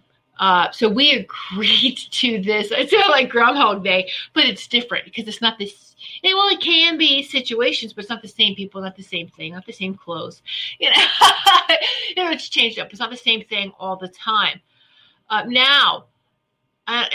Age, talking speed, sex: 30-49, 205 wpm, female